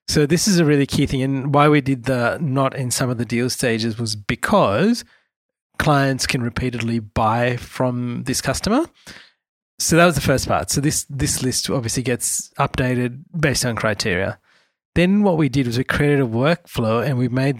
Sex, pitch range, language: male, 120-150 Hz, English